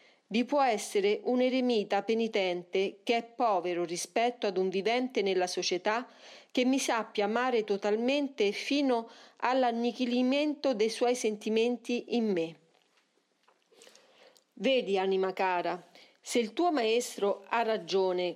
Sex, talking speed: female, 120 wpm